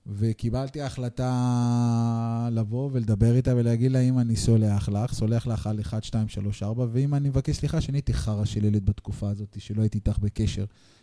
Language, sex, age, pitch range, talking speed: Hebrew, male, 30-49, 110-130 Hz, 185 wpm